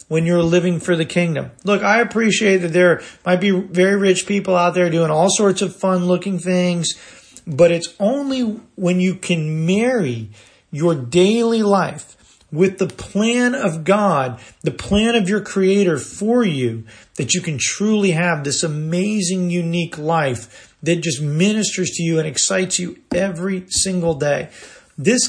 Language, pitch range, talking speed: English, 160-195 Hz, 160 wpm